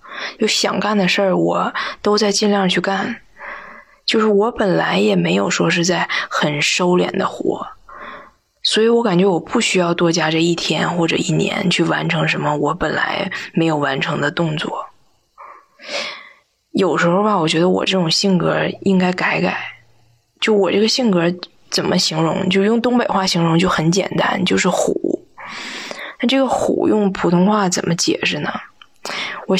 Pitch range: 170-220 Hz